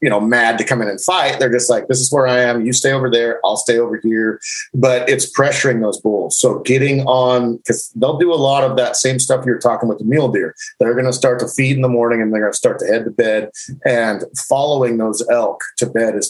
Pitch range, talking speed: 115-135 Hz, 265 wpm